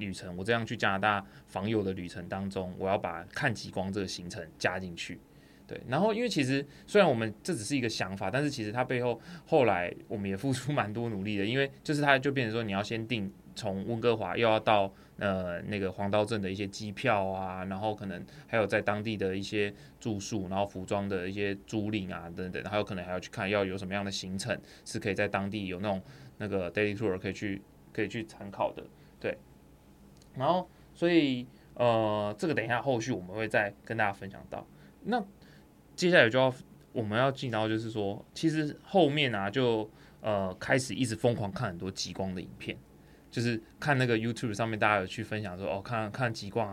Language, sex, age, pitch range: Chinese, male, 20-39, 95-120 Hz